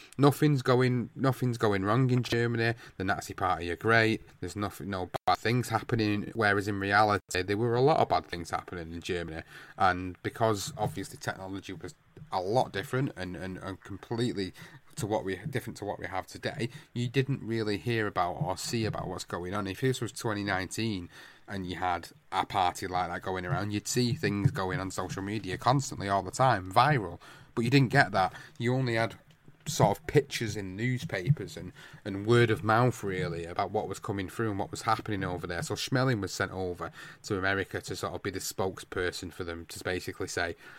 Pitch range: 95-120 Hz